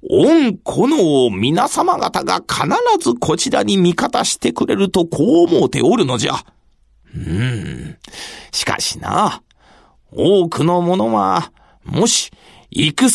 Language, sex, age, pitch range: Japanese, male, 40-59, 150-205 Hz